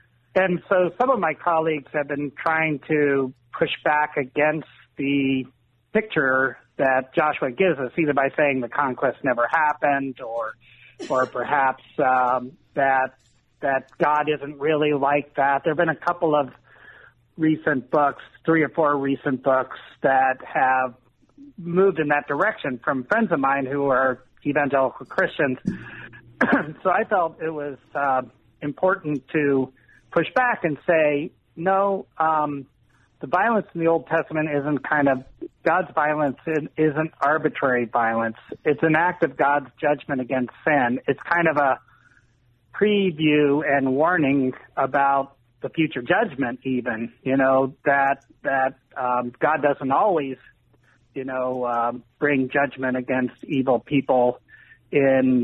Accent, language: American, English